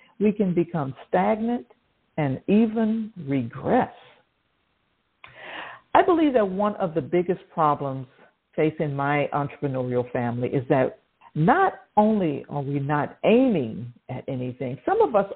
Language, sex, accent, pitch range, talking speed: English, female, American, 155-235 Hz, 125 wpm